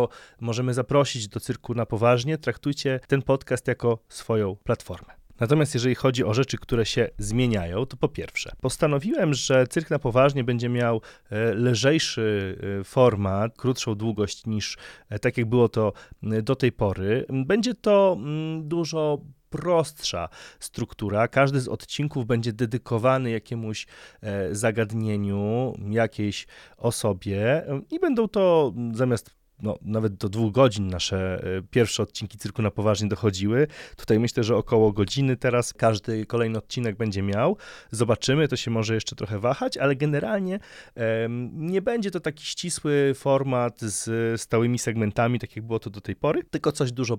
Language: Polish